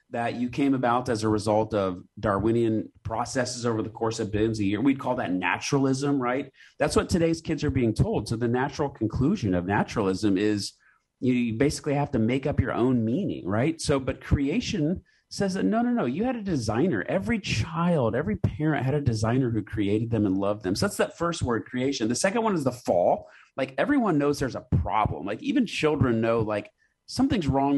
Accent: American